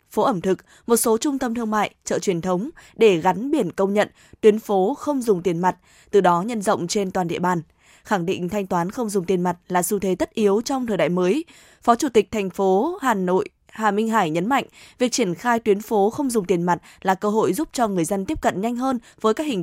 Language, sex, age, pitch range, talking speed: Vietnamese, female, 20-39, 190-235 Hz, 255 wpm